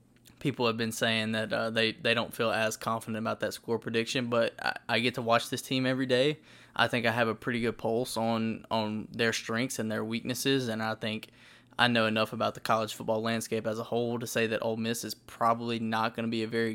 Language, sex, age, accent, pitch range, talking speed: English, male, 20-39, American, 110-120 Hz, 245 wpm